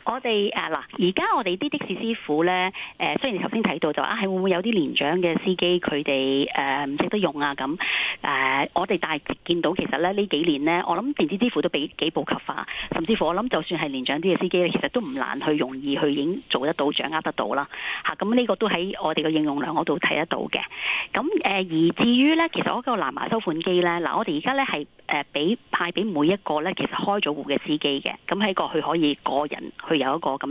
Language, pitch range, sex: Chinese, 155-235 Hz, female